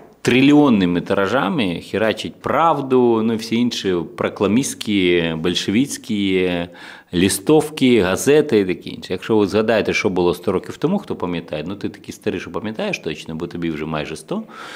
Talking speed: 155 wpm